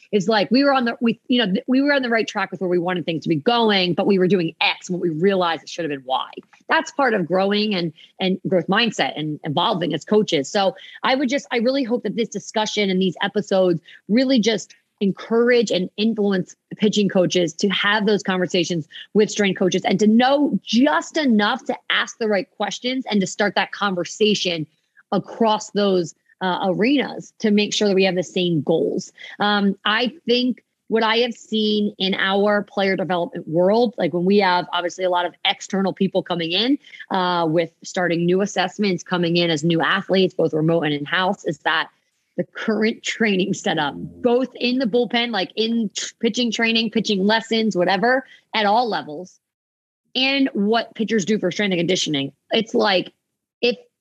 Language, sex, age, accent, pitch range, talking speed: English, female, 30-49, American, 180-230 Hz, 190 wpm